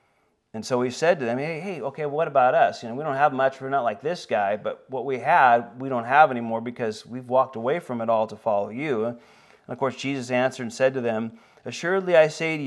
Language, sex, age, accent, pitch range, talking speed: Finnish, male, 40-59, American, 120-150 Hz, 255 wpm